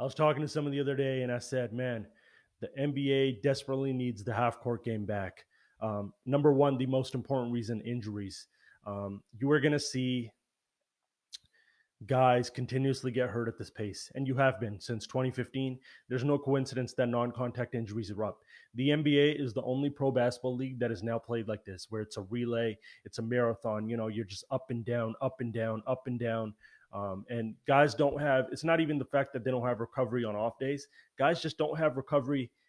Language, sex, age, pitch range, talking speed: English, male, 30-49, 115-135 Hz, 205 wpm